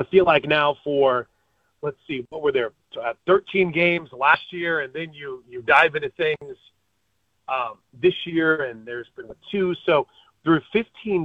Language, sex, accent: English, male, American